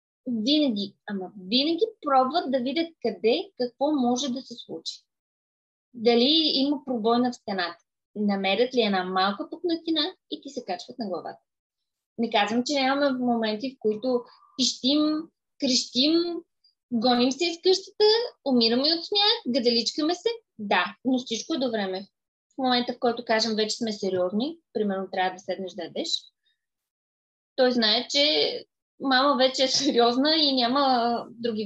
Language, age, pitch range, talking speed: Bulgarian, 20-39, 225-300 Hz, 140 wpm